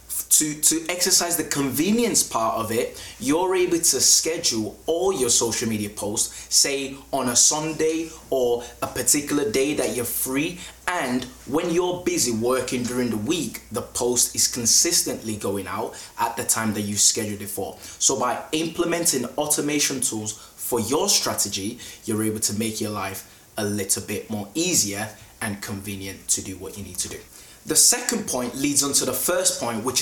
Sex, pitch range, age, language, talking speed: male, 105-150 Hz, 20-39, English, 175 wpm